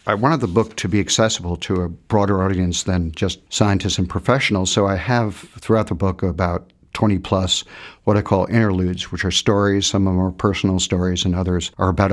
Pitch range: 95-110 Hz